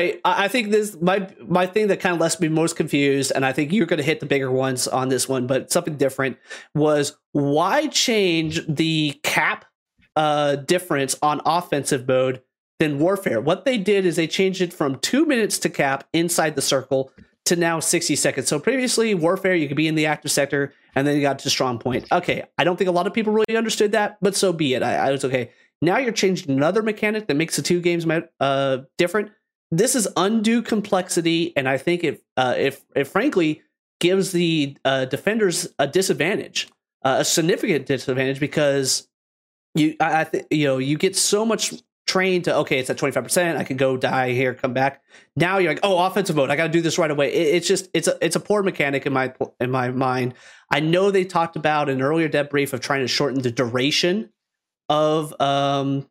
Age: 30-49